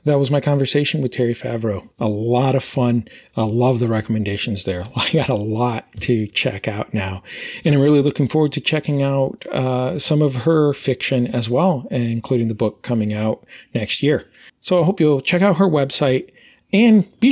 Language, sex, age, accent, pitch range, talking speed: English, male, 40-59, American, 120-155 Hz, 195 wpm